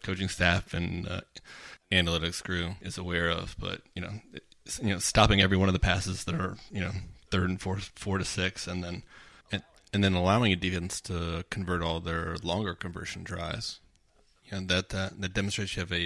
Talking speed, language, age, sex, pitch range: 200 wpm, English, 30-49, male, 90-100 Hz